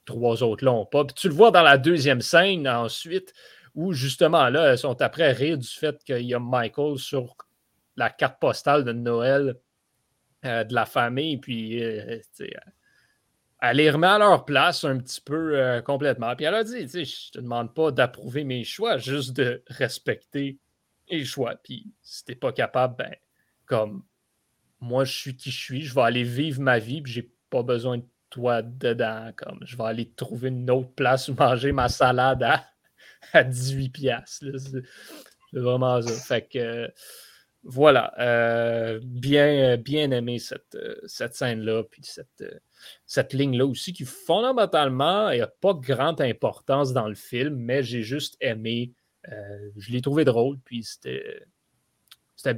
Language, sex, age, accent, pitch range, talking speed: French, male, 30-49, Canadian, 120-145 Hz, 175 wpm